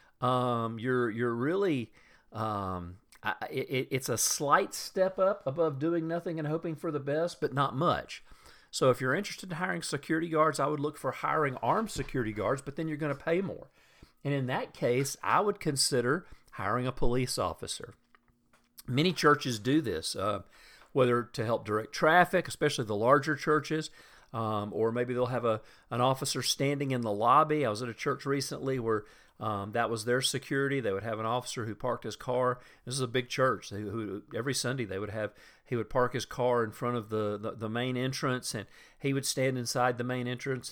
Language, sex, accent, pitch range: English, male, American, 120-140 Hz